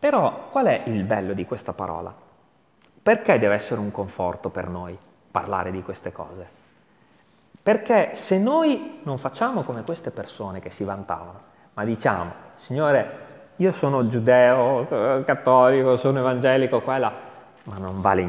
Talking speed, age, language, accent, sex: 140 wpm, 30-49, Italian, native, male